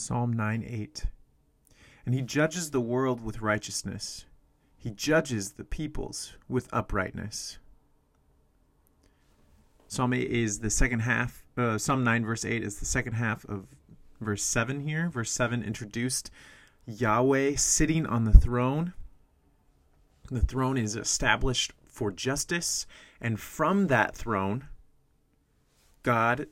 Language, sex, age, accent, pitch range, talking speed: English, male, 30-49, American, 105-135 Hz, 120 wpm